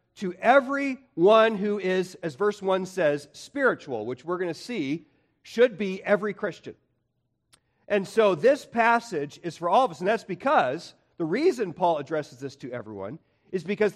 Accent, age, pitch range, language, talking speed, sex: American, 40-59, 140-225 Hz, English, 170 wpm, male